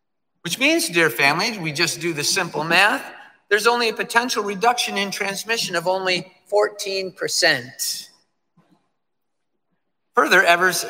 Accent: American